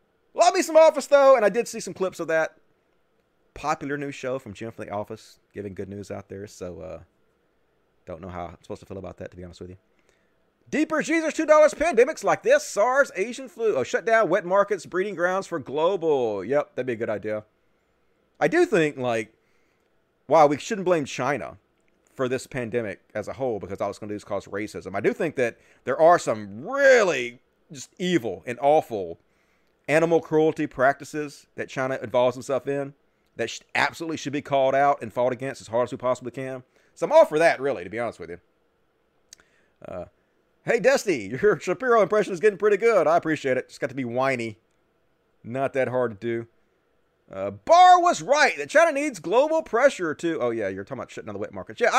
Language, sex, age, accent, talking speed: English, male, 30-49, American, 210 wpm